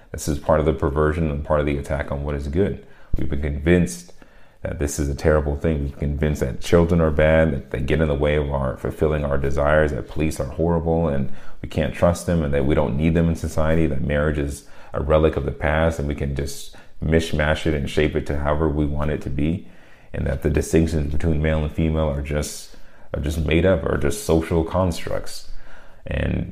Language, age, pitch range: English, 30-49, 70-80 Hz